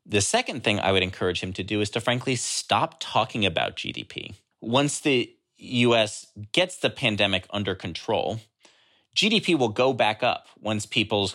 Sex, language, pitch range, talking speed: male, English, 100-130 Hz, 165 wpm